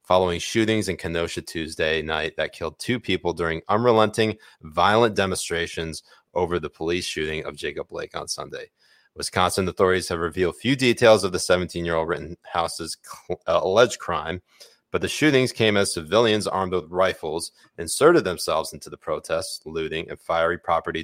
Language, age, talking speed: English, 30-49, 155 wpm